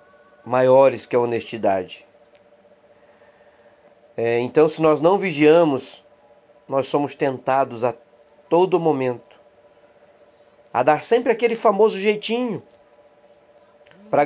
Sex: male